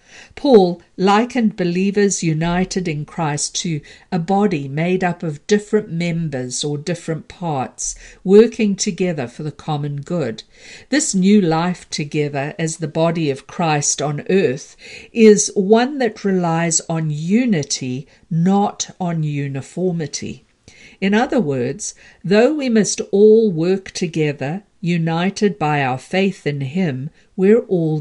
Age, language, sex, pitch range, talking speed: 50-69, English, female, 150-210 Hz, 130 wpm